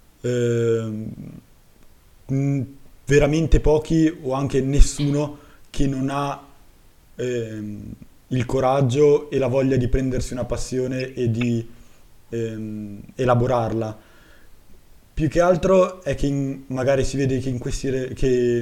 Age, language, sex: 20-39, Italian, male